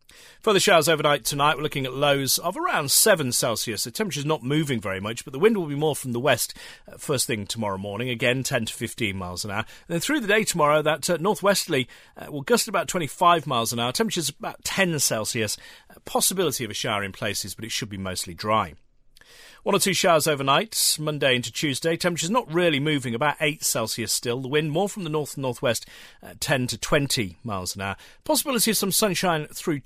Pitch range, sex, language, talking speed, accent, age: 115-165 Hz, male, English, 225 wpm, British, 40-59